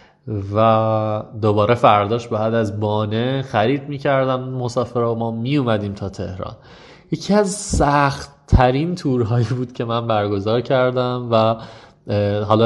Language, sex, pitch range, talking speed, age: Persian, male, 100-125 Hz, 130 wpm, 20-39